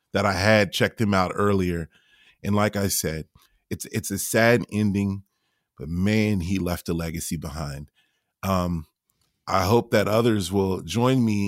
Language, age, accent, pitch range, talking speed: English, 30-49, American, 90-110 Hz, 160 wpm